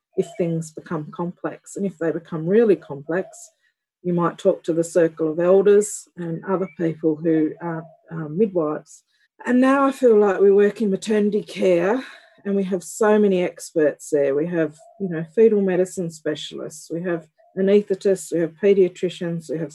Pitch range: 170-210 Hz